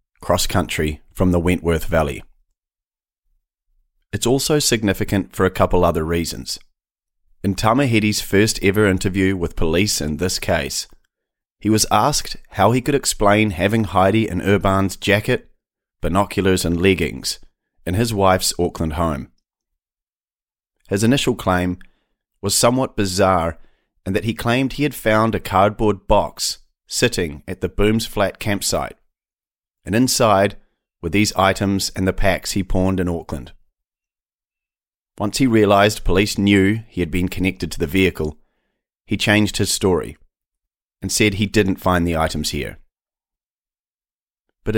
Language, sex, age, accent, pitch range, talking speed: English, male, 30-49, Australian, 85-110 Hz, 135 wpm